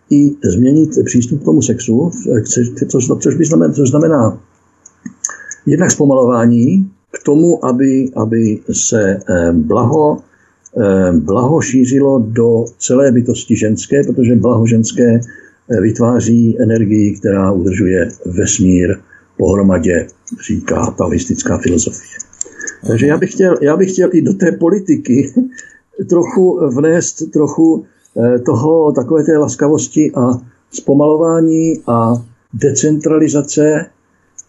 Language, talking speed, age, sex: Czech, 95 wpm, 60-79, male